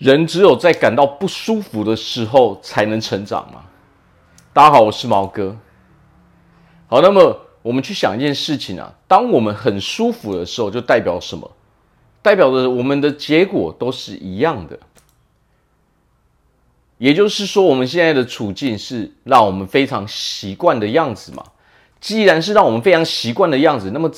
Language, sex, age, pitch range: Chinese, male, 40-59, 105-160 Hz